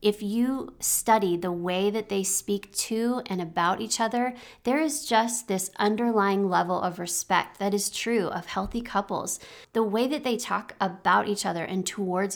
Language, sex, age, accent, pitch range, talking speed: English, female, 30-49, American, 185-225 Hz, 180 wpm